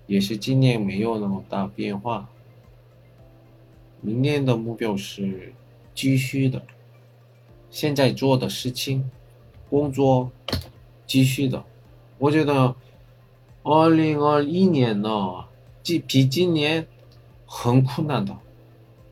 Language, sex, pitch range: Chinese, male, 110-130 Hz